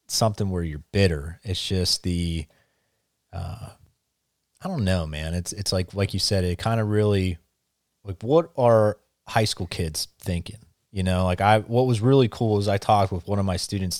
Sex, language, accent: male, English, American